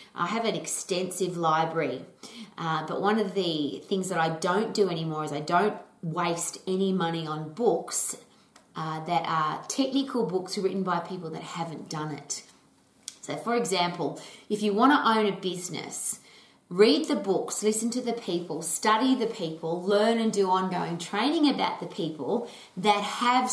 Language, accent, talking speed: English, Australian, 170 wpm